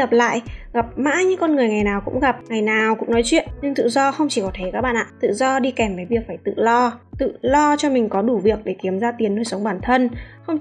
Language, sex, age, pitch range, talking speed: Vietnamese, female, 20-39, 215-280 Hz, 290 wpm